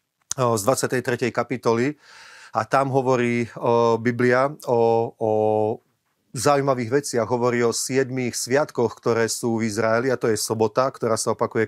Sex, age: male, 40-59